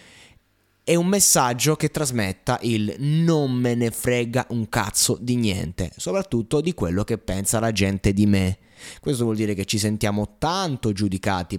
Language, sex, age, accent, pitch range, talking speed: Italian, male, 20-39, native, 100-135 Hz, 160 wpm